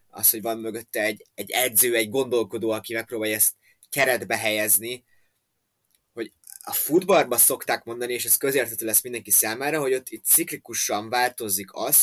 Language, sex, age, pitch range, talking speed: Hungarian, male, 20-39, 105-125 Hz, 155 wpm